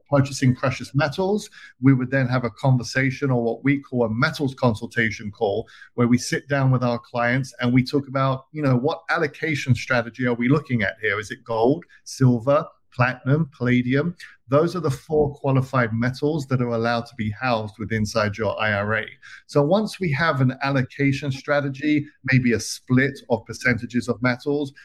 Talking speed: 180 wpm